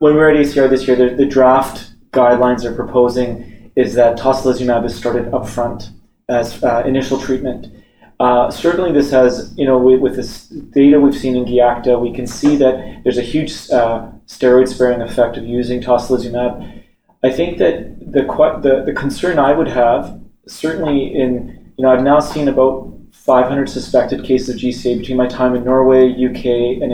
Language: English